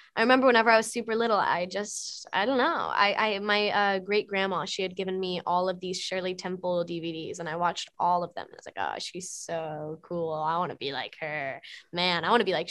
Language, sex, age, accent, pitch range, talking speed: English, female, 10-29, American, 190-275 Hz, 245 wpm